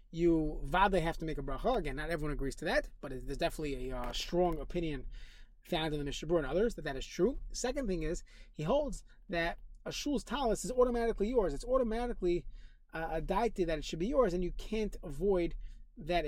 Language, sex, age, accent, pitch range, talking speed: English, male, 30-49, American, 150-195 Hz, 210 wpm